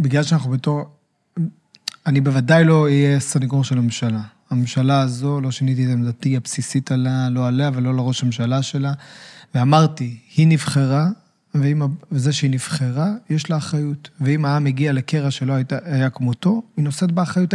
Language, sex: Hebrew, male